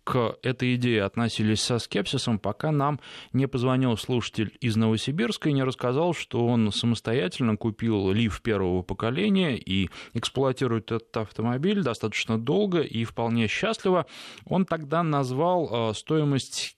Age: 20-39